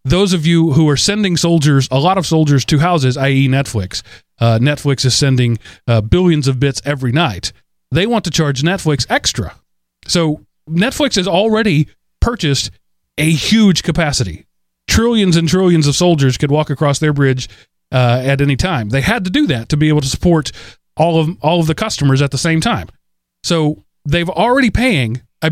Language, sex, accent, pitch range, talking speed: English, male, American, 130-170 Hz, 185 wpm